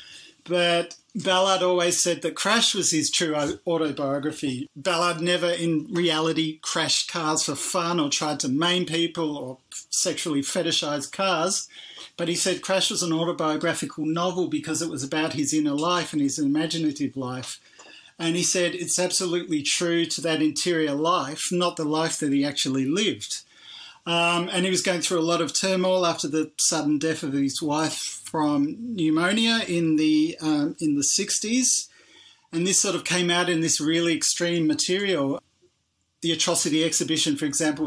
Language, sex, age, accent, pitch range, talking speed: English, male, 40-59, Australian, 150-180 Hz, 165 wpm